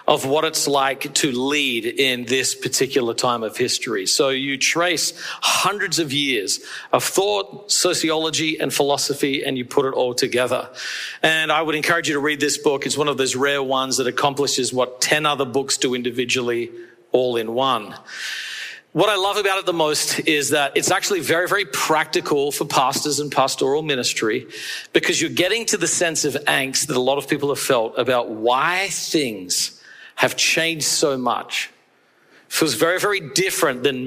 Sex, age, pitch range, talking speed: male, 40-59, 130-170 Hz, 180 wpm